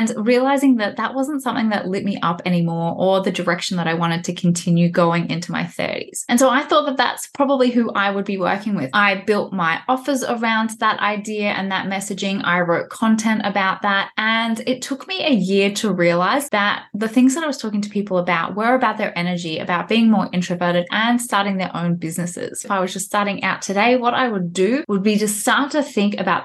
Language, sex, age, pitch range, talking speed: English, female, 20-39, 175-225 Hz, 225 wpm